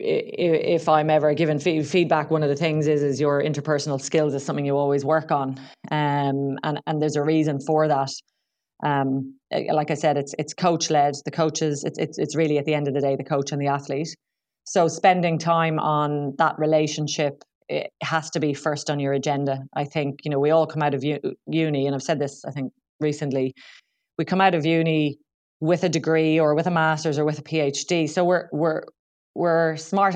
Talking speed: 210 wpm